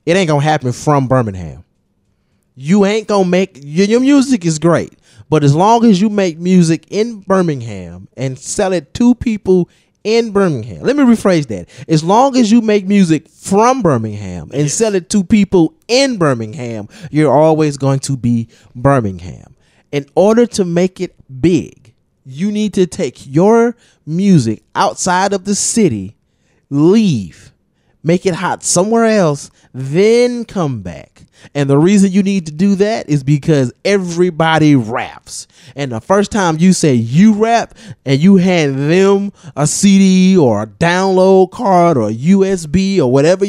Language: English